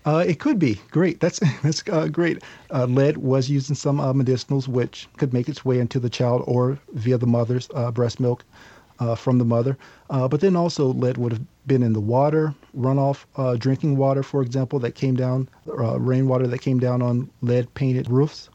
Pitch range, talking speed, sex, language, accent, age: 120-140 Hz, 205 wpm, male, English, American, 40-59